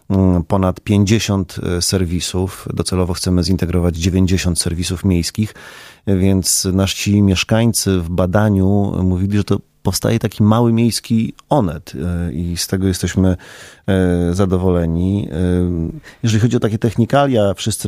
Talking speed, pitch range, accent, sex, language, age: 110 wpm, 90-100 Hz, native, male, Polish, 30-49